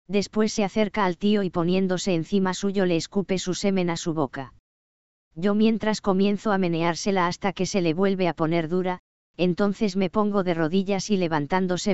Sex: female